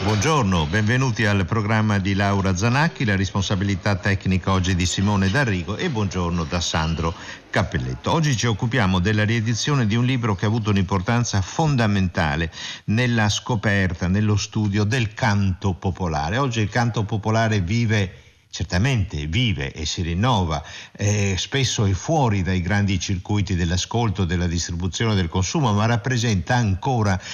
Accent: native